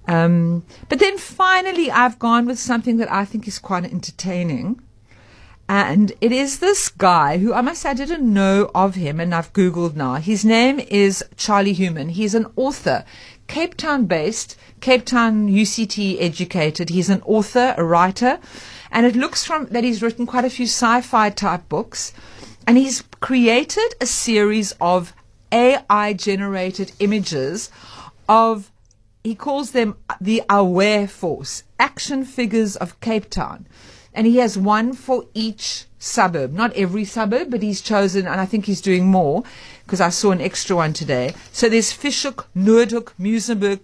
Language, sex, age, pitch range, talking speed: English, female, 50-69, 180-235 Hz, 160 wpm